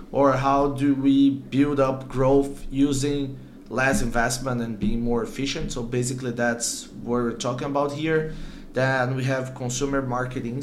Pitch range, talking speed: 115-135 Hz, 150 wpm